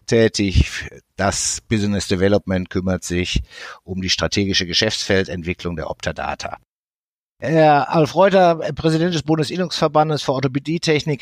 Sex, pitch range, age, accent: male, 115-150 Hz, 60-79, German